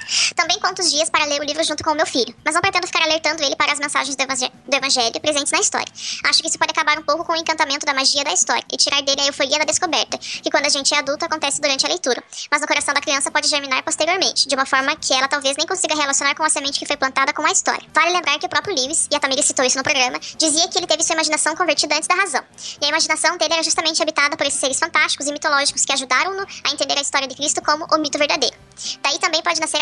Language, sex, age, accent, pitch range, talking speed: Portuguese, male, 10-29, Brazilian, 285-330 Hz, 275 wpm